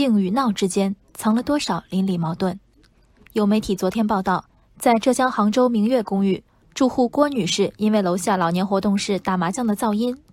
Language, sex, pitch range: Chinese, female, 195-240 Hz